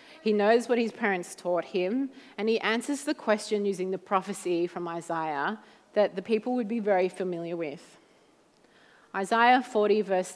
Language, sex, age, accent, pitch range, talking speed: English, female, 30-49, Australian, 190-230 Hz, 160 wpm